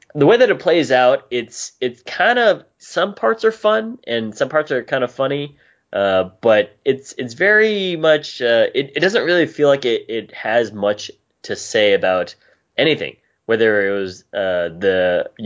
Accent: American